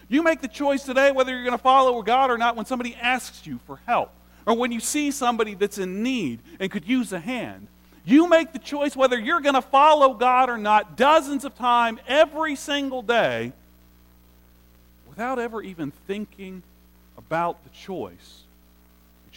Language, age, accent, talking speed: English, 40-59, American, 180 wpm